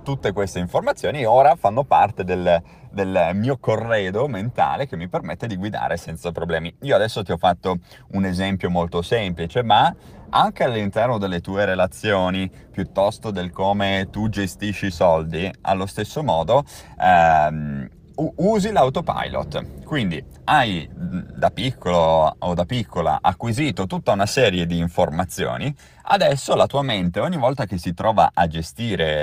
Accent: native